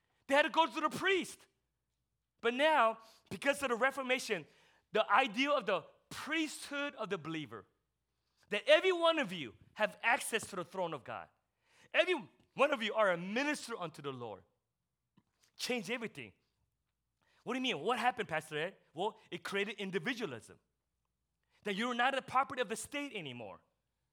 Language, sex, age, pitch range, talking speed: English, male, 30-49, 215-290 Hz, 165 wpm